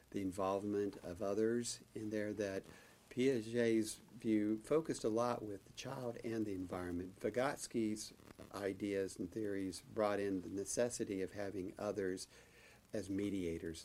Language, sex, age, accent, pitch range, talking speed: English, male, 50-69, American, 95-110 Hz, 135 wpm